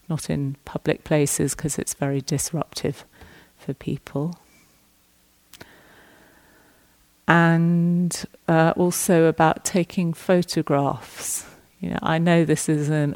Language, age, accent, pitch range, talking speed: English, 40-59, British, 145-160 Hz, 105 wpm